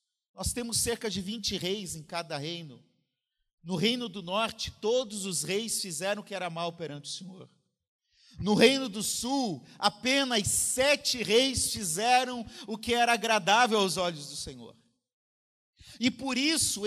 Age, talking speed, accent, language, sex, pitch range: 50-69, 155 wpm, Brazilian, Portuguese, male, 185-260 Hz